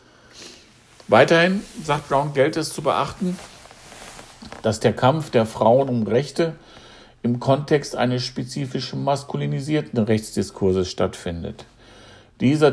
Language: German